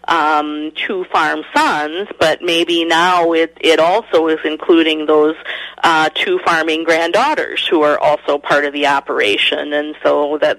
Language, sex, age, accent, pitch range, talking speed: English, female, 30-49, American, 150-210 Hz, 155 wpm